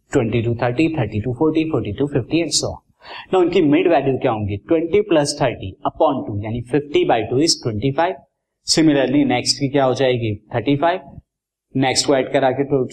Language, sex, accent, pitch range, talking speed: Hindi, male, native, 120-155 Hz, 45 wpm